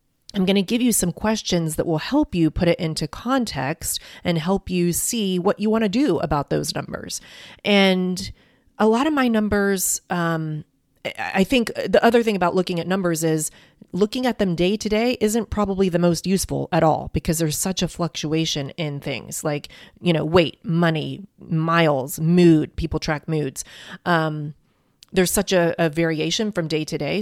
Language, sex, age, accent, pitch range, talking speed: English, female, 30-49, American, 155-200 Hz, 185 wpm